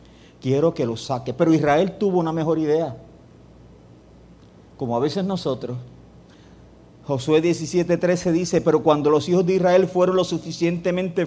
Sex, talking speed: male, 140 wpm